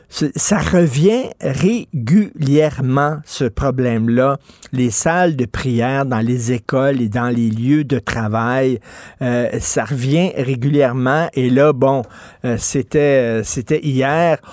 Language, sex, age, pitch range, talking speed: French, male, 50-69, 125-165 Hz, 125 wpm